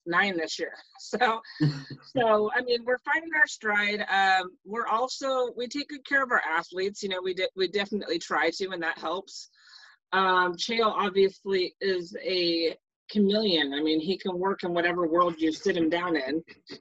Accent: American